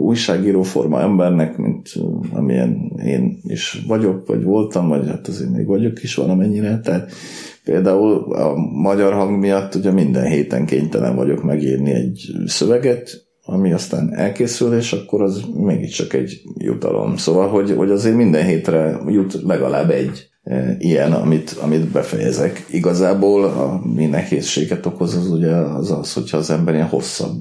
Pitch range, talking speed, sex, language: 80-100 Hz, 145 wpm, male, Hungarian